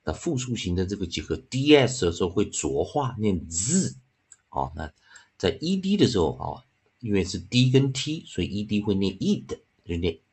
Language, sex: Chinese, male